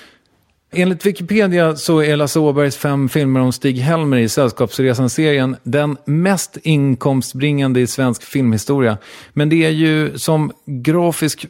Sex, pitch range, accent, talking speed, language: male, 115-150 Hz, Swedish, 130 wpm, English